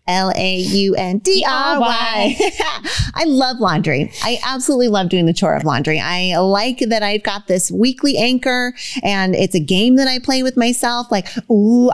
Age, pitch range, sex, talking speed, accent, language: 30-49, 180-230 Hz, female, 185 wpm, American, English